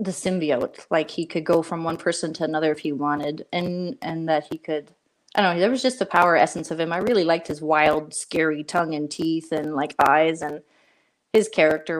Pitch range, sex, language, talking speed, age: 155-185 Hz, female, English, 225 wpm, 20-39